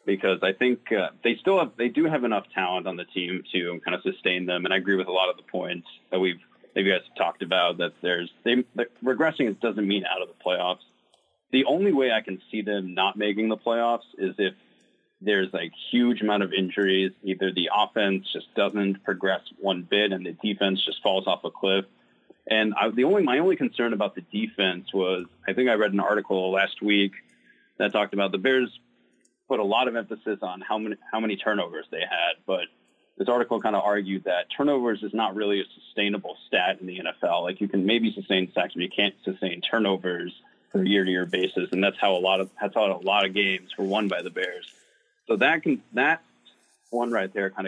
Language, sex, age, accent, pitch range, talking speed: English, male, 30-49, American, 95-110 Hz, 225 wpm